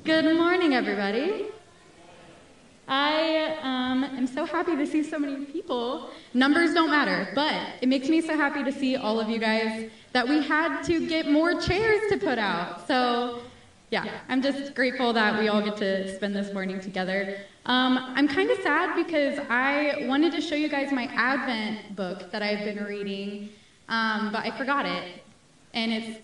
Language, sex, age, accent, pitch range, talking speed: English, female, 10-29, American, 205-285 Hz, 180 wpm